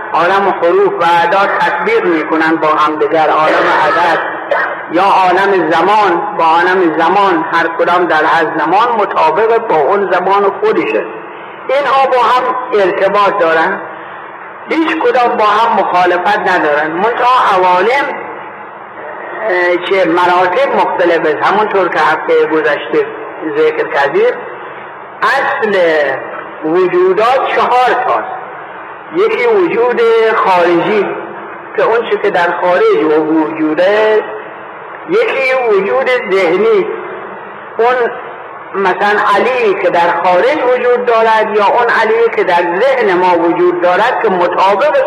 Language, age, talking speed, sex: Persian, 60-79, 115 wpm, male